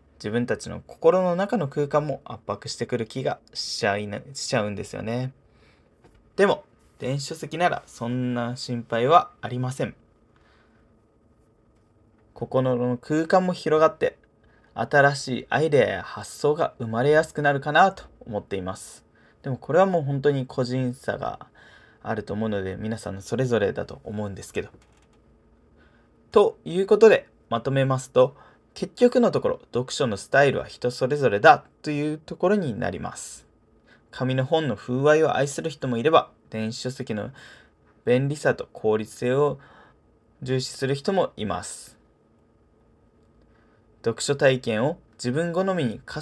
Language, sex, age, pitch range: Japanese, male, 20-39, 115-155 Hz